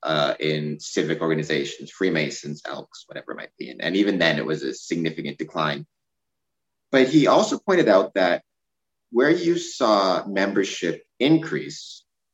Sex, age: male, 30-49